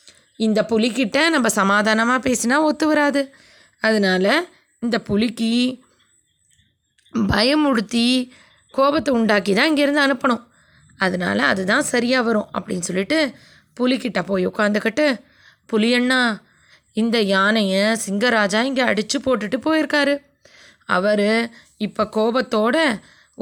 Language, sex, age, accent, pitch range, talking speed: Tamil, female, 20-39, native, 215-300 Hz, 90 wpm